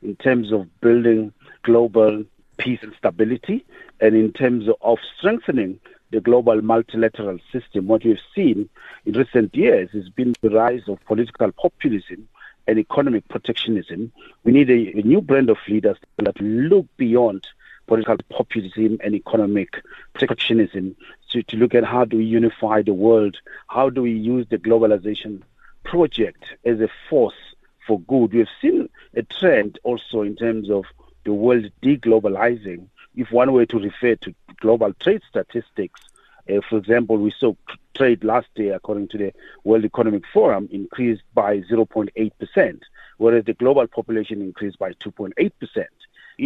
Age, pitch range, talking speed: 50-69, 105-125 Hz, 150 wpm